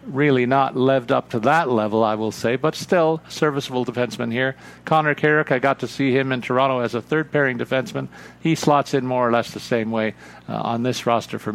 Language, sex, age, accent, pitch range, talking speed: English, male, 50-69, American, 115-135 Hz, 225 wpm